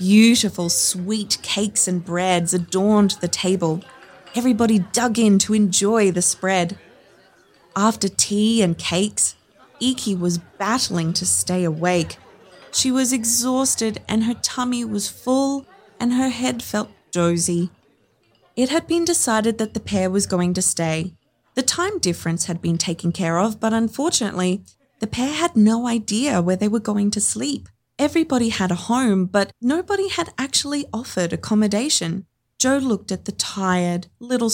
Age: 20-39